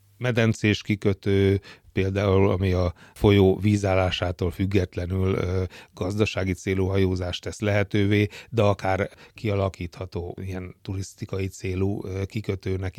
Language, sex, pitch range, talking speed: Hungarian, male, 95-110 Hz, 90 wpm